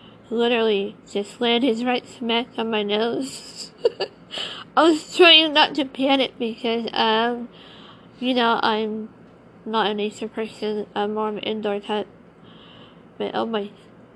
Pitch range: 215-245 Hz